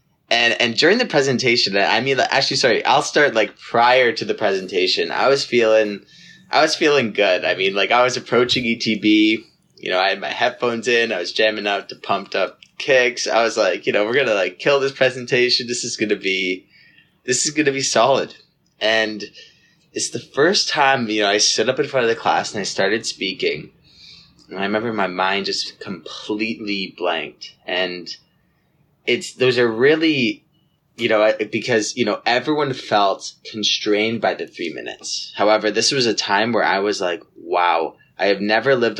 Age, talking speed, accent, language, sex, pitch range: 20-39, 190 wpm, American, English, male, 100-130 Hz